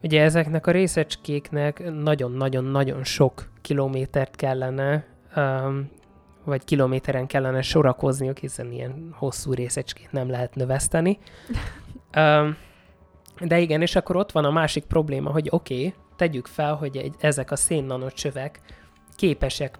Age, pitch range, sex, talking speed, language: 20-39, 130-150 Hz, male, 120 wpm, Hungarian